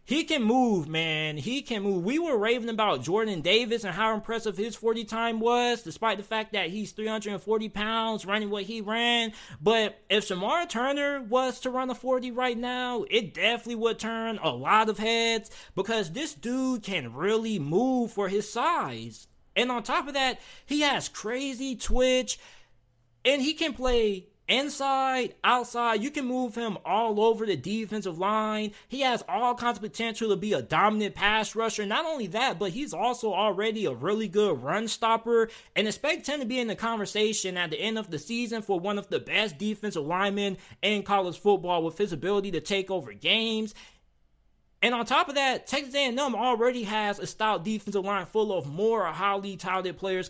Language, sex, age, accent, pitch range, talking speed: English, male, 20-39, American, 190-235 Hz, 185 wpm